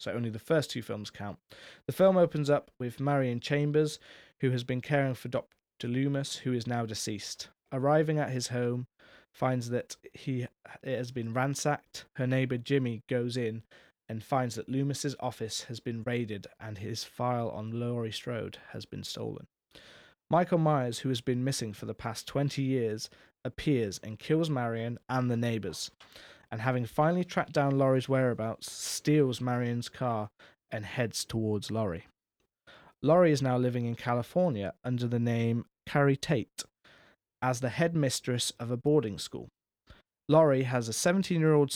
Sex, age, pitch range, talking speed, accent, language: male, 20-39, 115-140 Hz, 160 wpm, British, English